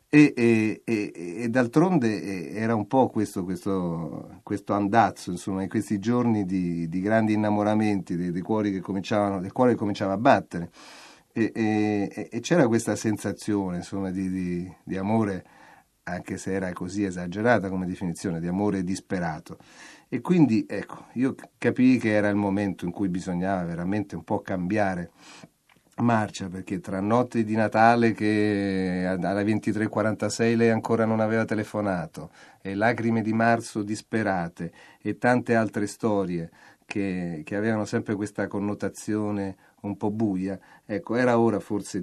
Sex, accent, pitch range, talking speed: male, native, 95-110 Hz, 150 wpm